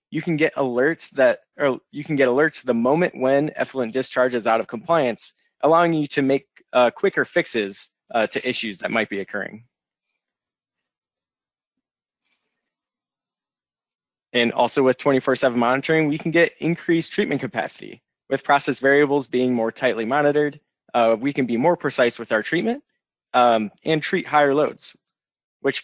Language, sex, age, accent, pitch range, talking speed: English, male, 20-39, American, 115-150 Hz, 155 wpm